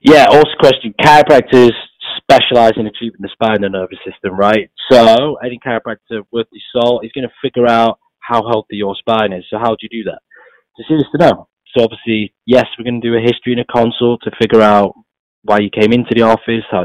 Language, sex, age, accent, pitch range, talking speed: English, male, 20-39, British, 100-115 Hz, 215 wpm